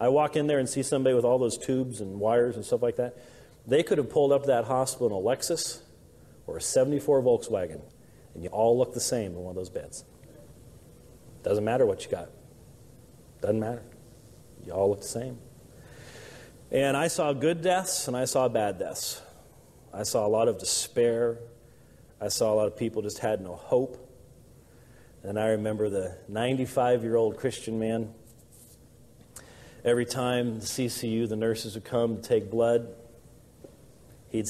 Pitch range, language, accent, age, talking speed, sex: 110-125 Hz, English, American, 40-59, 175 wpm, male